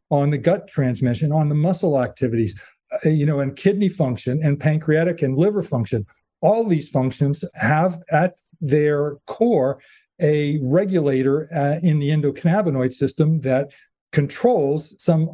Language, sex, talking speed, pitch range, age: English, male, 135 wpm, 135-165 Hz, 50-69